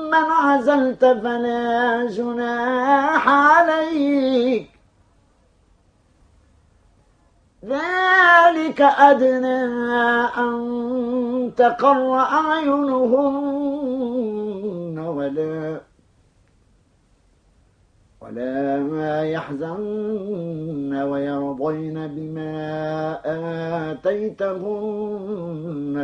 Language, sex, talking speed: Arabic, male, 40 wpm